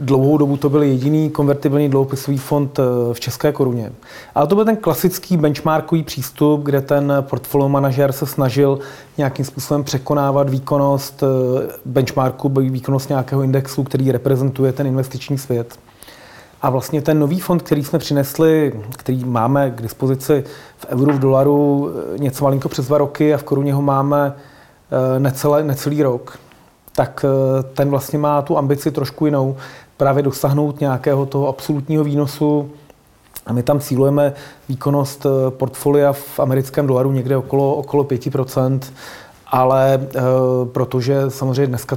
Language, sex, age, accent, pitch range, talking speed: Czech, male, 30-49, native, 130-145 Hz, 140 wpm